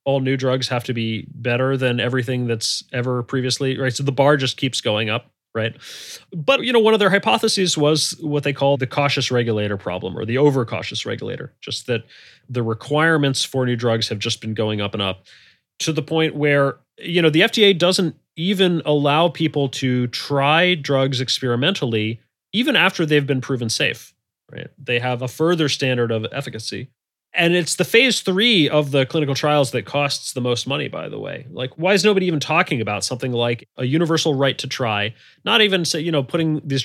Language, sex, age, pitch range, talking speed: English, male, 30-49, 125-165 Hz, 200 wpm